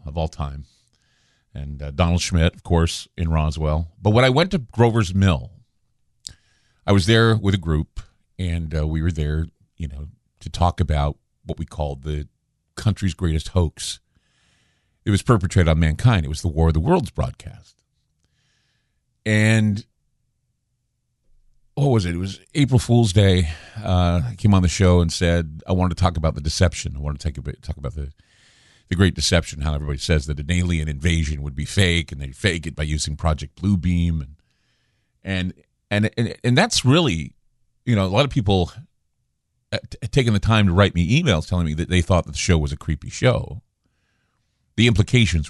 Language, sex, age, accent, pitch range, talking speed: English, male, 50-69, American, 80-110 Hz, 185 wpm